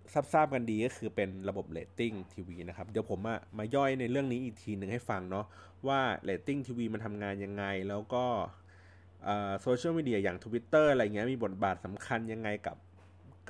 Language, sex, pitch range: Thai, male, 95-130 Hz